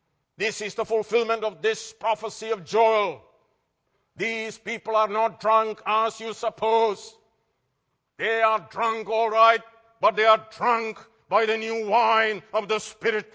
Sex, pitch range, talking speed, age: male, 215-230 Hz, 150 wpm, 60-79